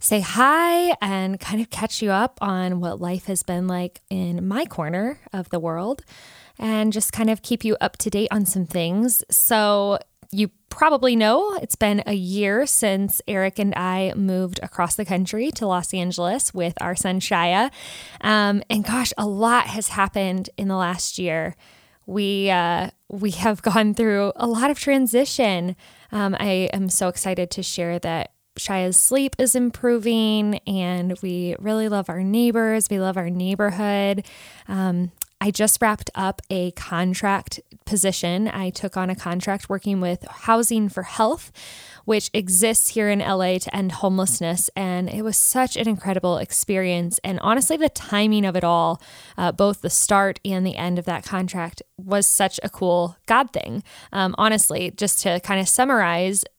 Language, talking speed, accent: English, 170 wpm, American